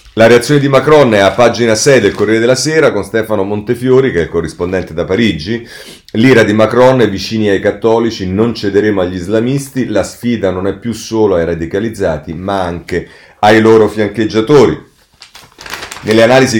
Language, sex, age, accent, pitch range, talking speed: Italian, male, 40-59, native, 85-115 Hz, 170 wpm